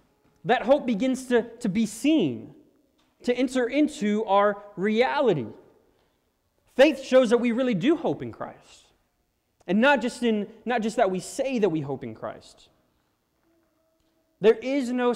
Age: 20-39